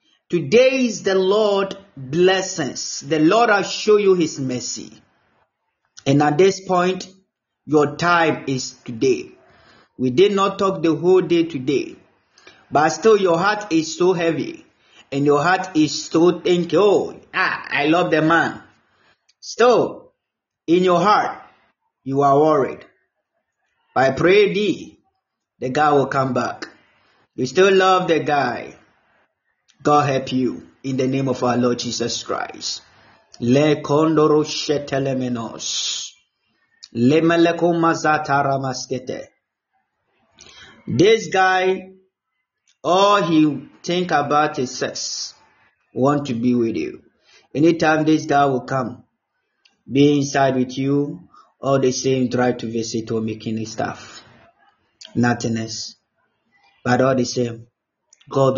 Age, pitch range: 30-49, 130-185 Hz